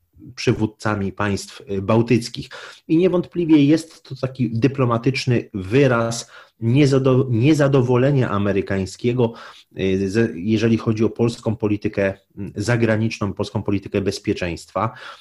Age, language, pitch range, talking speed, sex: 30-49, Polish, 100-120 Hz, 85 wpm, male